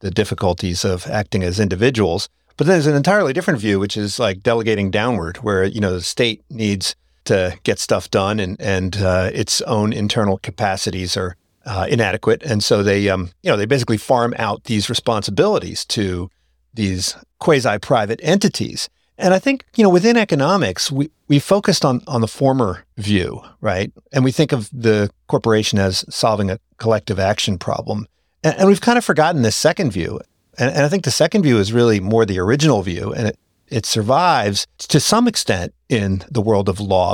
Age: 50-69